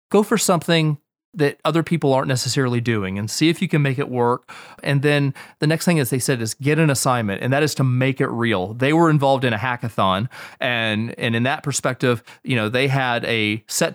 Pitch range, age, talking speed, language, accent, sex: 120-145 Hz, 30-49, 230 wpm, English, American, male